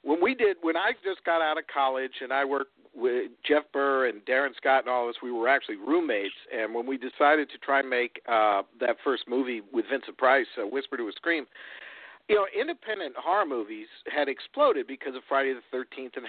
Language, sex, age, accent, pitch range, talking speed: English, male, 50-69, American, 135-205 Hz, 220 wpm